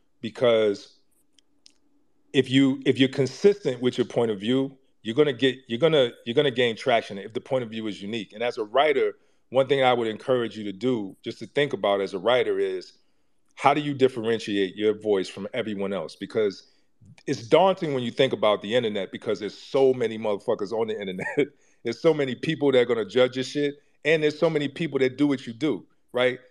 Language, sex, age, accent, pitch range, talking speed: English, male, 40-59, American, 115-155 Hz, 220 wpm